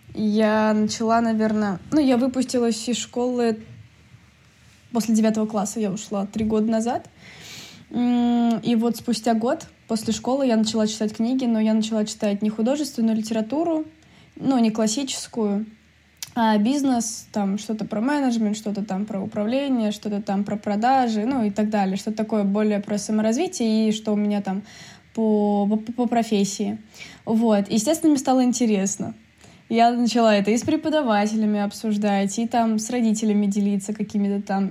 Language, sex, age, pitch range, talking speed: Russian, female, 20-39, 210-235 Hz, 150 wpm